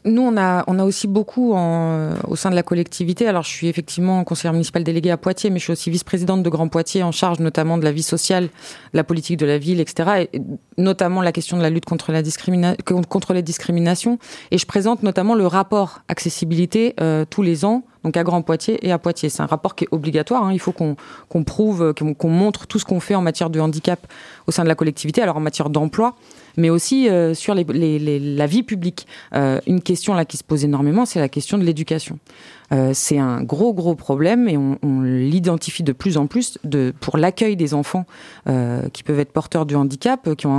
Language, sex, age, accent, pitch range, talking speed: French, female, 20-39, French, 155-195 Hz, 230 wpm